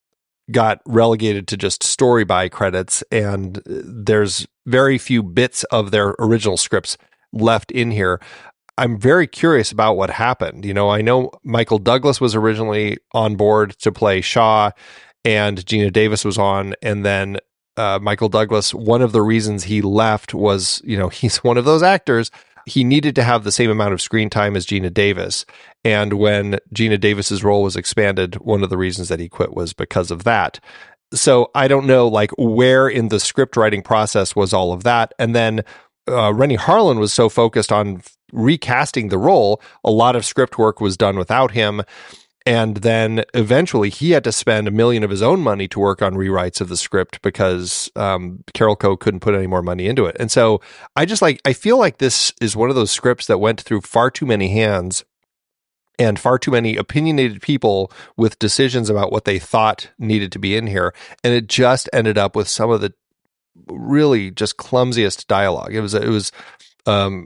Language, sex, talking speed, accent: English, male, 195 wpm, American